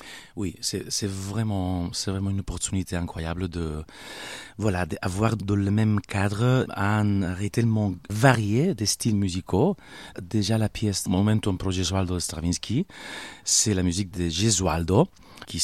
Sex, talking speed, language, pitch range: male, 140 wpm, French, 85-105 Hz